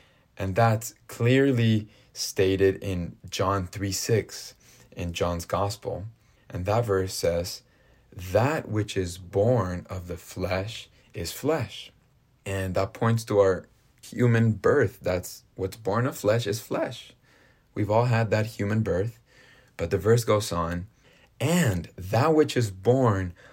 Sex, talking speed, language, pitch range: male, 140 wpm, English, 95-125 Hz